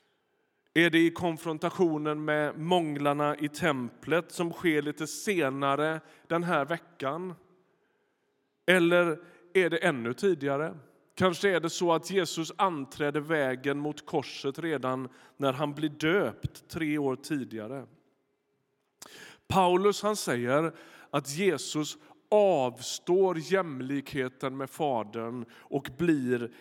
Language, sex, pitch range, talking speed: Swedish, male, 140-175 Hz, 110 wpm